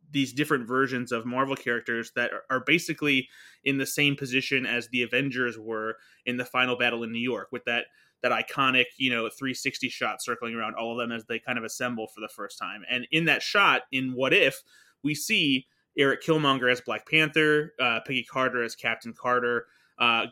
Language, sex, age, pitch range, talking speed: English, male, 20-39, 120-140 Hz, 200 wpm